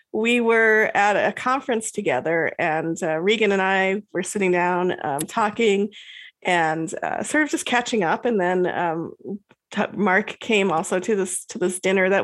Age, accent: 30-49, American